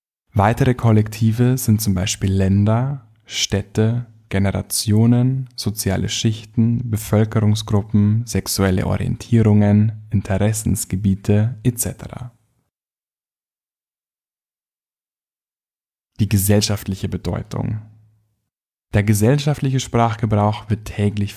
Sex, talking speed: male, 65 wpm